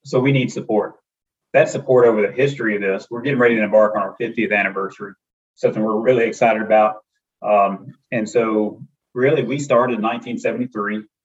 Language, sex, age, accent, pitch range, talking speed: English, male, 30-49, American, 105-120 Hz, 175 wpm